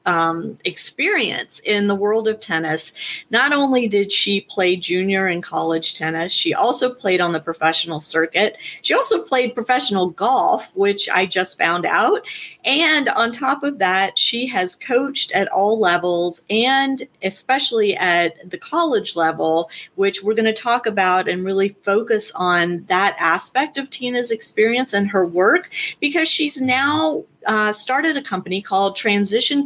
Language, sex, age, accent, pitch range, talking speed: English, female, 30-49, American, 185-250 Hz, 155 wpm